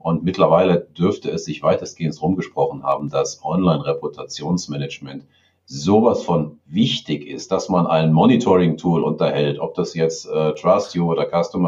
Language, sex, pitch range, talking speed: German, male, 75-95 Hz, 135 wpm